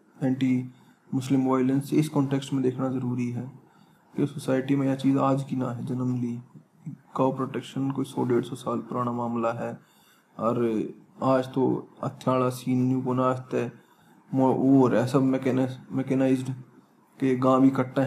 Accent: native